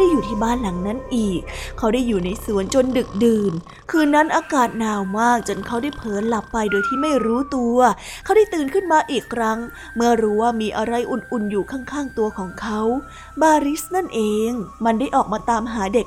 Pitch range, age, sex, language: 215-265 Hz, 20-39, female, Thai